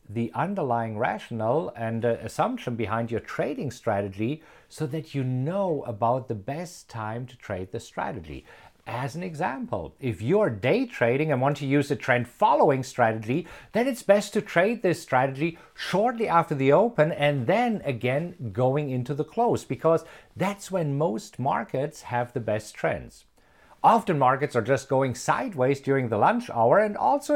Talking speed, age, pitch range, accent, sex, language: 165 wpm, 50-69, 115-170 Hz, German, male, English